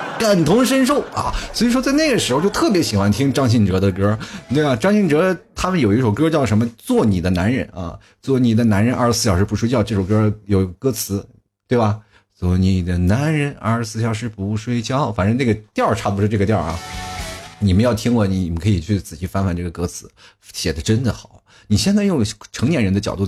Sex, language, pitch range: male, Chinese, 95-135 Hz